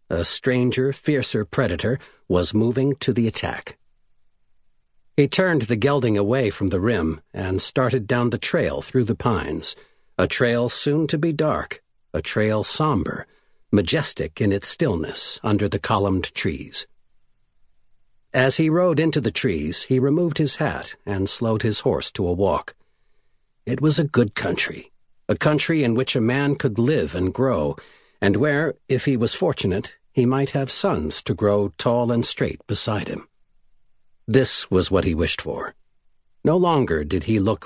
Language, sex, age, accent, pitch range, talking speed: English, male, 60-79, American, 105-135 Hz, 165 wpm